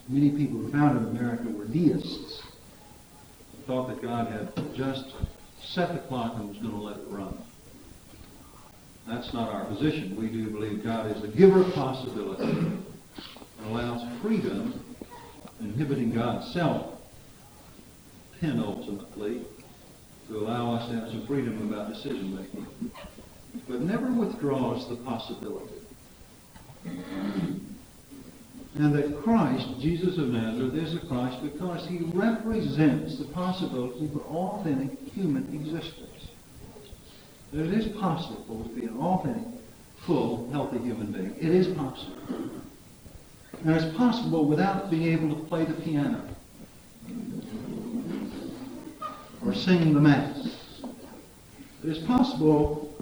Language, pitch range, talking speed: English, 120-180 Hz, 120 wpm